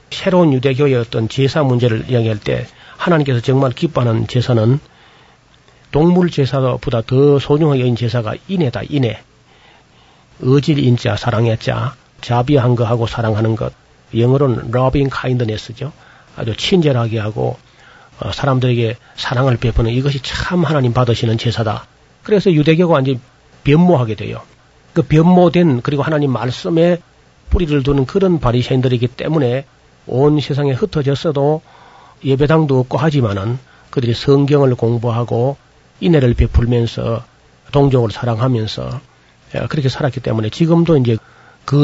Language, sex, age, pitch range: Korean, male, 40-59, 120-145 Hz